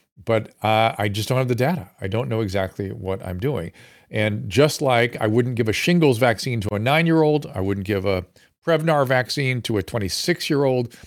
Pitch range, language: 105-130 Hz, English